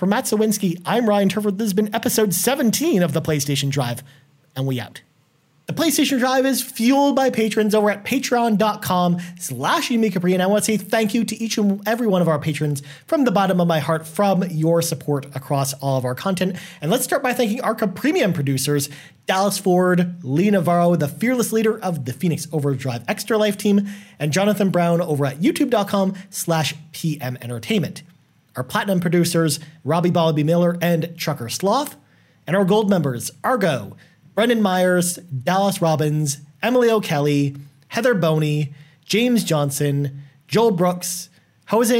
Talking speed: 165 wpm